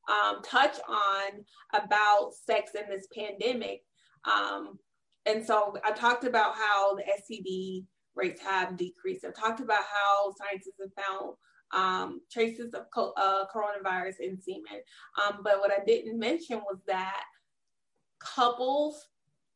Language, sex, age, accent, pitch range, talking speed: English, female, 20-39, American, 195-230 Hz, 130 wpm